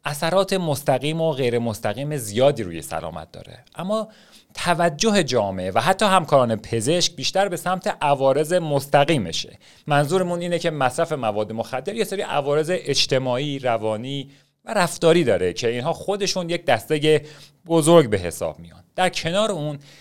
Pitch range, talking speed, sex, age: 120-170 Hz, 145 wpm, male, 40-59